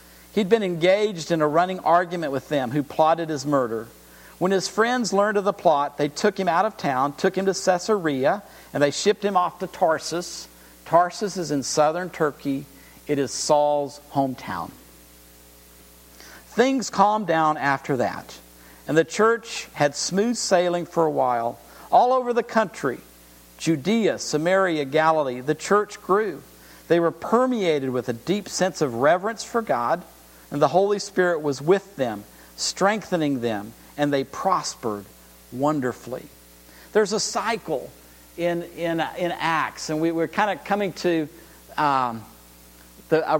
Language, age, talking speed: English, 50-69, 150 wpm